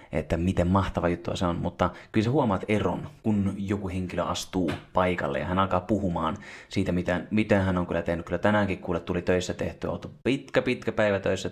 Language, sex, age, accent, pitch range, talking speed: Finnish, male, 30-49, native, 85-95 Hz, 200 wpm